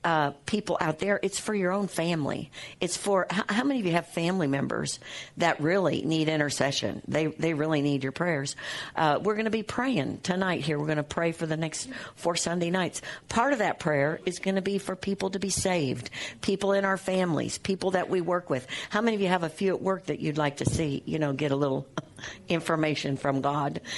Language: English